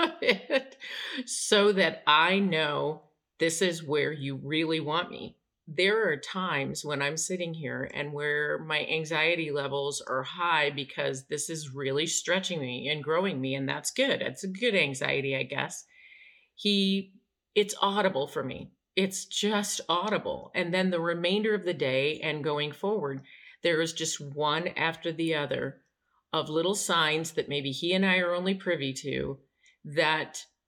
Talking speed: 160 wpm